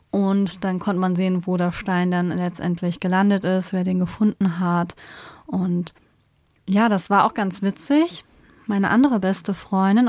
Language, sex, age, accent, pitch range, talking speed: German, female, 20-39, German, 180-220 Hz, 160 wpm